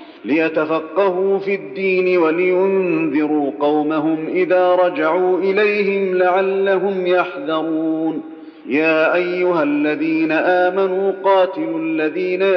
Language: Arabic